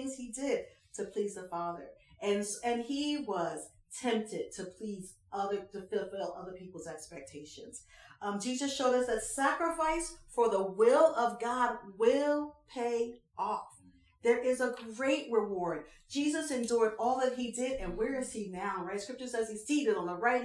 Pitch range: 200-275 Hz